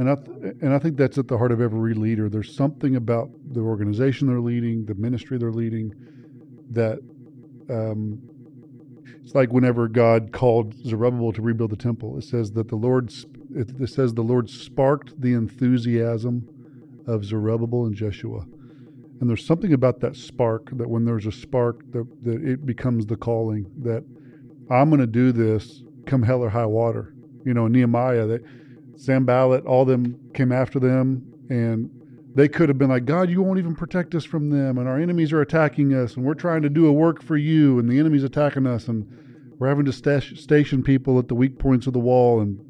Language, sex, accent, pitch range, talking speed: English, male, American, 115-135 Hz, 200 wpm